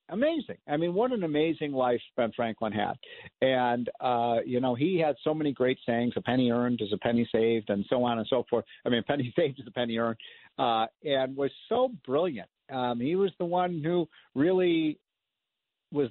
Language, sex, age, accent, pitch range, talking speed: English, male, 50-69, American, 130-170 Hz, 205 wpm